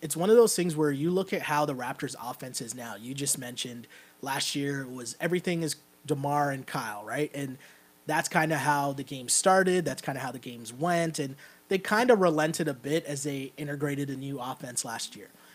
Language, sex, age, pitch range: English, male, 30-49, 135-170 Hz